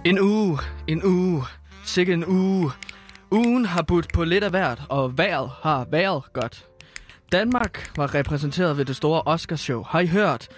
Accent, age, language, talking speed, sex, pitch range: native, 20-39, Danish, 165 wpm, male, 150-205 Hz